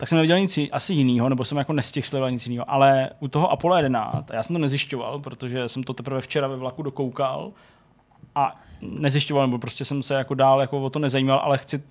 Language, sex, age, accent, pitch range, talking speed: Czech, male, 20-39, native, 135-155 Hz, 220 wpm